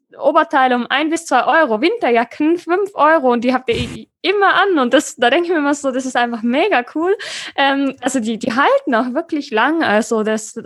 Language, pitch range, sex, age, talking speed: German, 235-300 Hz, female, 20-39, 215 wpm